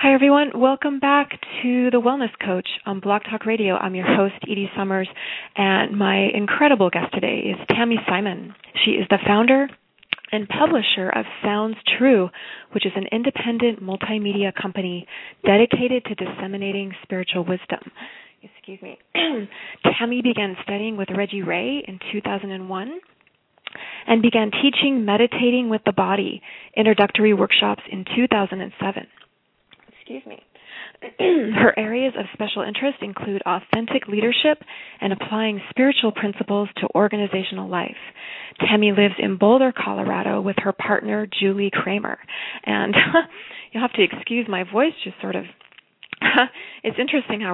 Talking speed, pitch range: 135 wpm, 195-240 Hz